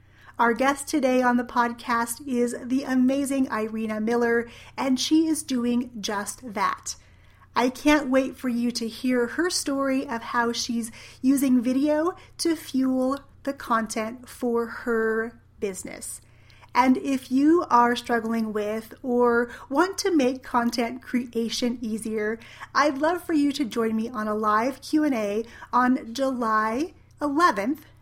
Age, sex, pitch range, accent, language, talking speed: 30-49, female, 225-275 Hz, American, English, 140 wpm